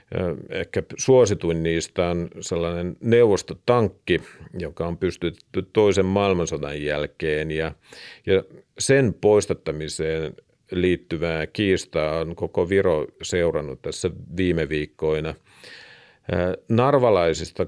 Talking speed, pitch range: 85 wpm, 80-105 Hz